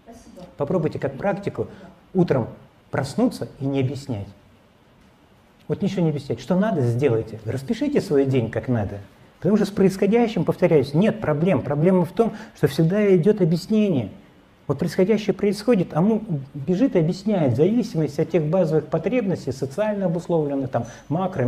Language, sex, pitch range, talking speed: Russian, male, 130-185 Hz, 140 wpm